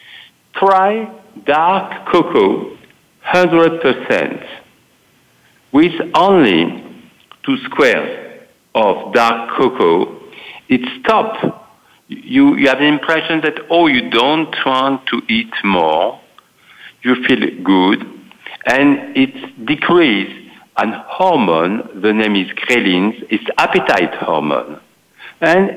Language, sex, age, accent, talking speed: English, male, 60-79, French, 100 wpm